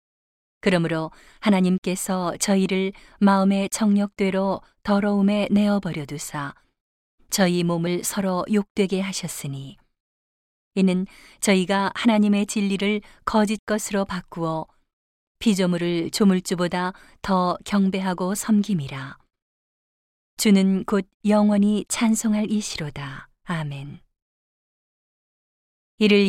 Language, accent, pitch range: Korean, native, 180-205 Hz